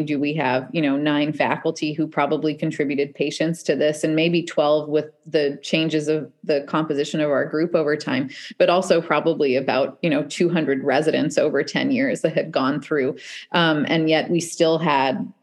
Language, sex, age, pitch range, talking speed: English, female, 30-49, 145-175 Hz, 185 wpm